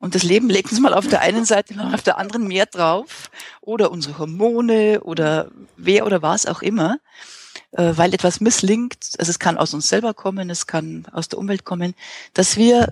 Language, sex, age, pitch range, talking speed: German, female, 40-59, 170-215 Hz, 200 wpm